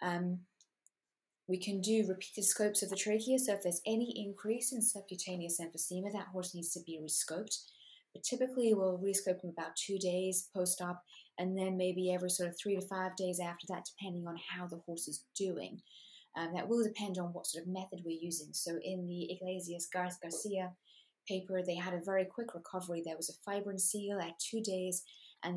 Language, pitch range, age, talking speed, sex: English, 170-200 Hz, 30-49, 195 wpm, female